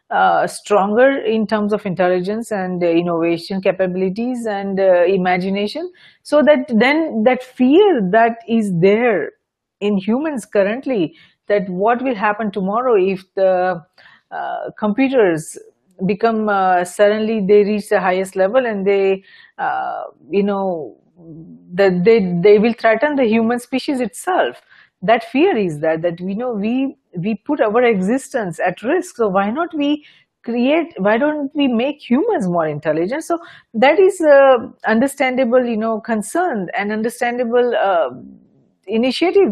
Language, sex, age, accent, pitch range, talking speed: English, female, 40-59, Indian, 195-265 Hz, 145 wpm